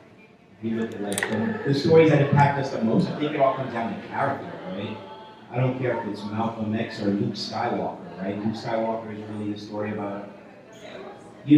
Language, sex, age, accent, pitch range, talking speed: English, male, 30-49, American, 100-115 Hz, 190 wpm